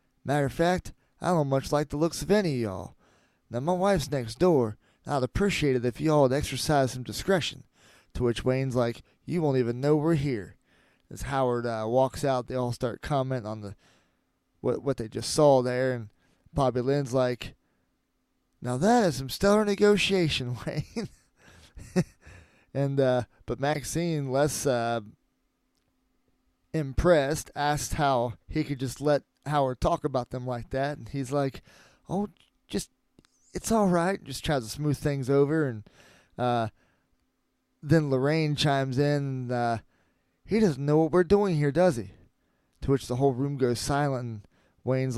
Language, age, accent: English, 20-39, American